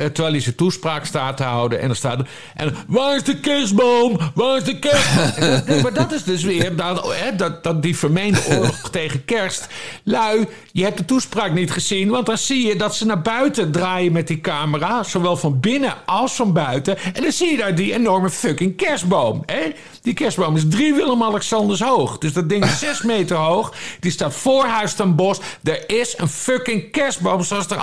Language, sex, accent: Dutch, male, Dutch